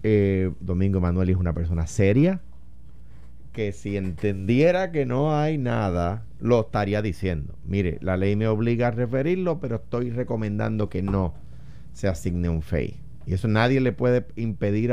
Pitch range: 90-125 Hz